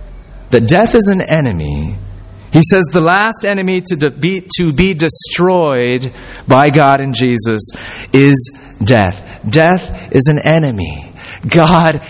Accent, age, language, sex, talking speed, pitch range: American, 30-49, English, male, 125 wpm, 120-180 Hz